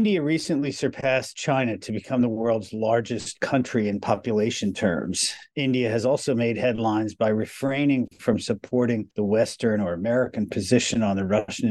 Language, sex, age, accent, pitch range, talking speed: English, male, 50-69, American, 100-125 Hz, 155 wpm